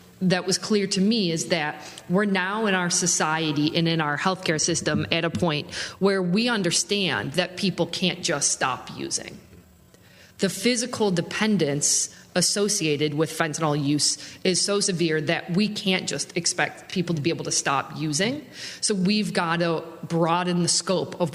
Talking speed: 165 wpm